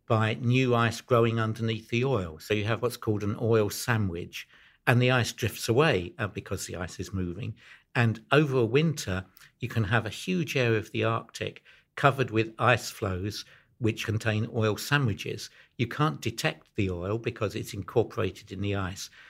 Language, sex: English, male